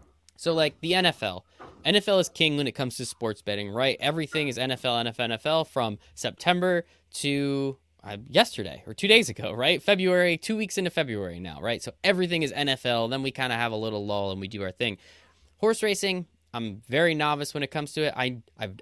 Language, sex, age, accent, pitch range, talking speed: English, male, 10-29, American, 115-170 Hz, 205 wpm